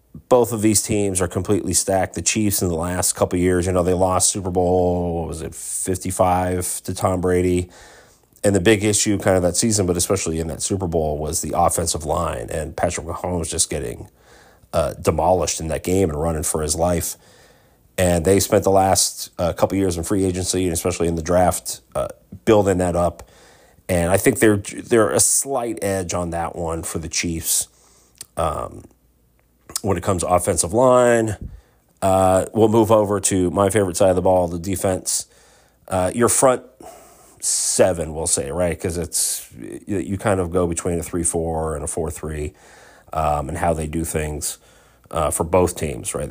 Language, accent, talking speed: English, American, 190 wpm